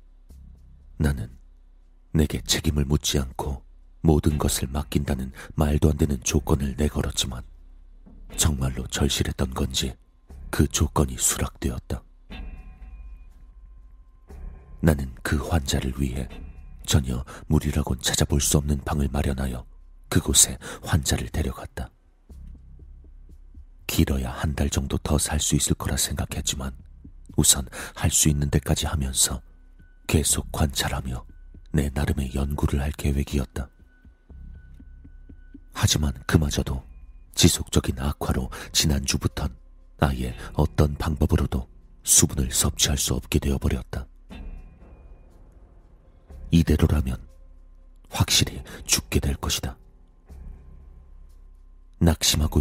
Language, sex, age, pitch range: Korean, male, 40-59, 65-80 Hz